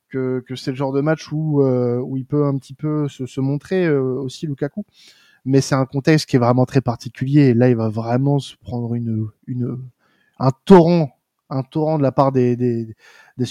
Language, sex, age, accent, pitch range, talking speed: French, male, 20-39, French, 125-155 Hz, 220 wpm